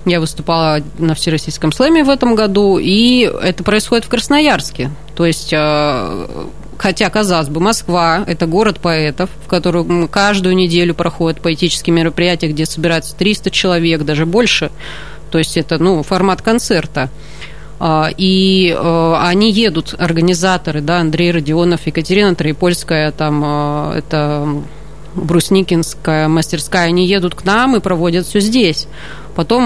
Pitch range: 155-190 Hz